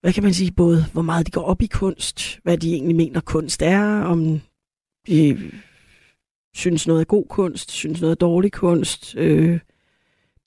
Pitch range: 165-195 Hz